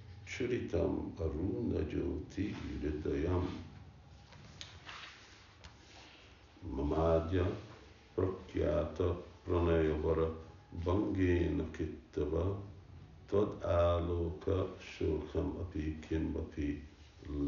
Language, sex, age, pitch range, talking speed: English, male, 60-79, 80-95 Hz, 45 wpm